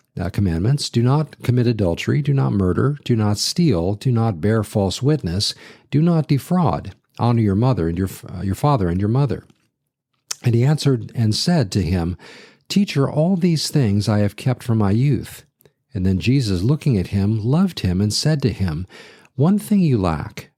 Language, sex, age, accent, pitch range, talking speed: English, male, 50-69, American, 100-140 Hz, 185 wpm